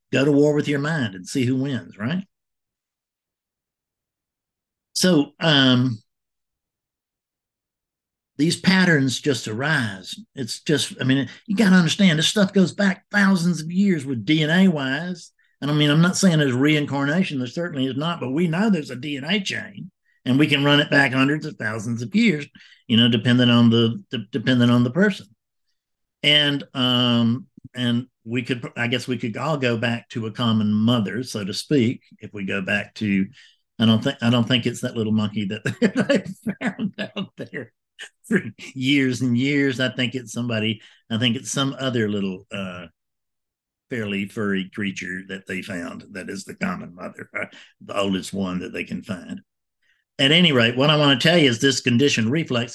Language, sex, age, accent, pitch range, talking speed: English, male, 50-69, American, 115-160 Hz, 180 wpm